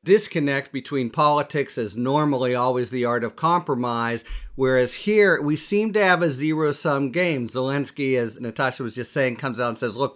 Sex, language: male, English